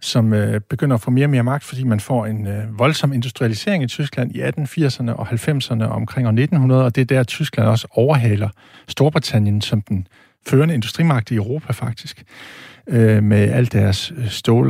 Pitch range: 115-145 Hz